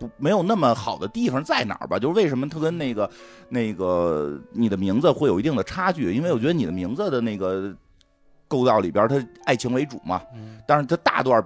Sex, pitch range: male, 105-135 Hz